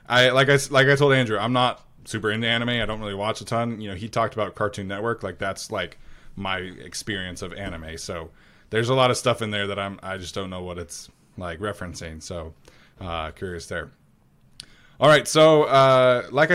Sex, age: male, 20-39